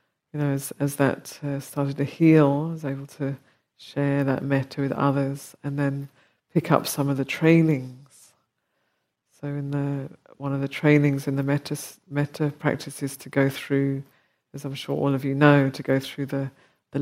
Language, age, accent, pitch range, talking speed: English, 50-69, British, 135-145 Hz, 190 wpm